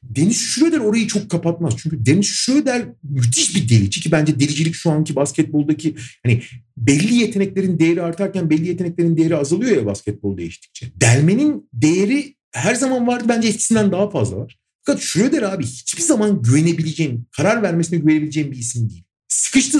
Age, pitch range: 40-59, 125-195 Hz